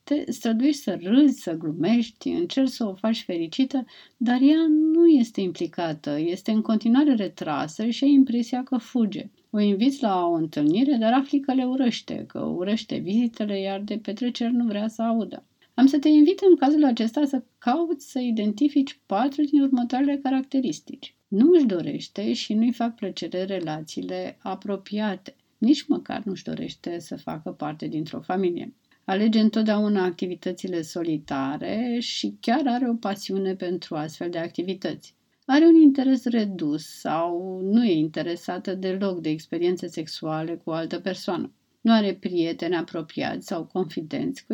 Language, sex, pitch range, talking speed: Romanian, female, 180-260 Hz, 155 wpm